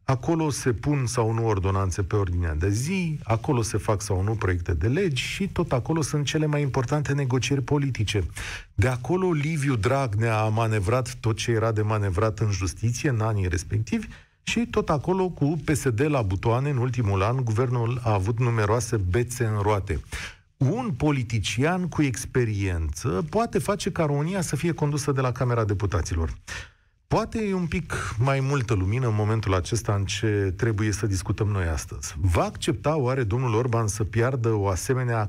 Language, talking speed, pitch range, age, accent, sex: Romanian, 170 wpm, 105-140 Hz, 40-59, native, male